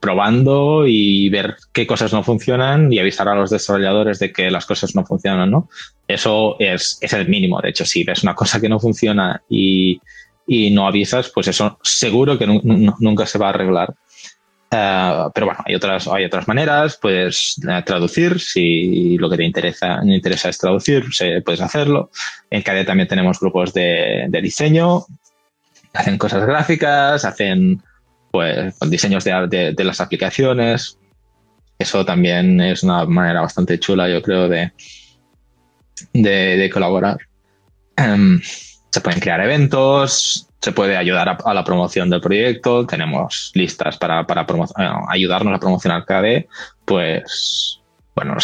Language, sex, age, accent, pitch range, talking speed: Spanish, male, 20-39, Spanish, 95-140 Hz, 155 wpm